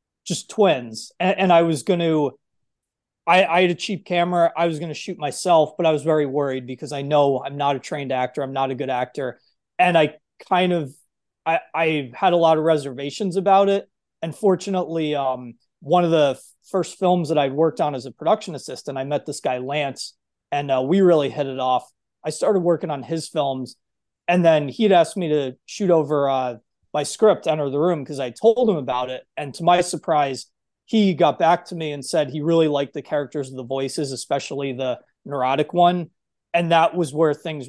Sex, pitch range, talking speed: male, 135-170 Hz, 210 wpm